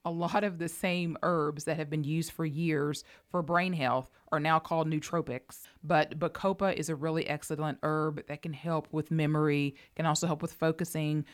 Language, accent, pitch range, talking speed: English, American, 145-170 Hz, 190 wpm